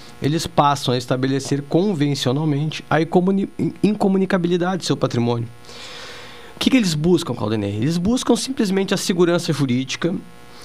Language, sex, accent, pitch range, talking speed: Portuguese, male, Brazilian, 120-175 Hz, 125 wpm